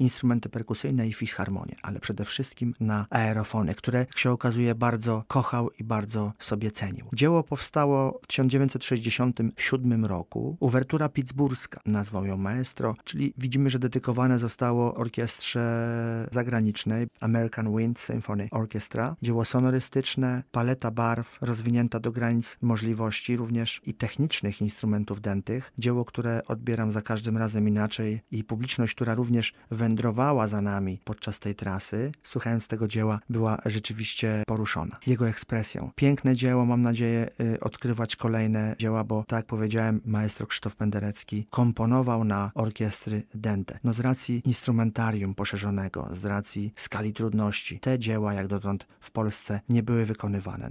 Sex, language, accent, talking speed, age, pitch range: male, Polish, native, 135 wpm, 40-59, 105-125 Hz